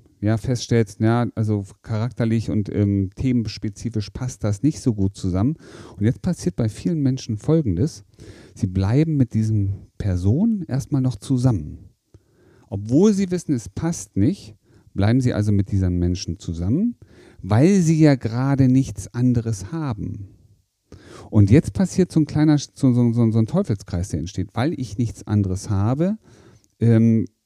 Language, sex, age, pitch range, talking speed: German, male, 40-59, 100-130 Hz, 150 wpm